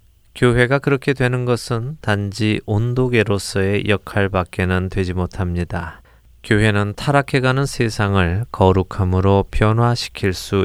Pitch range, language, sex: 90-110 Hz, Korean, male